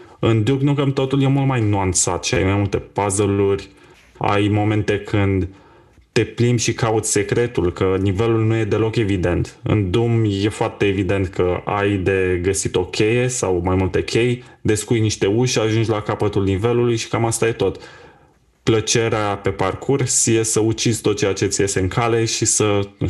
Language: Romanian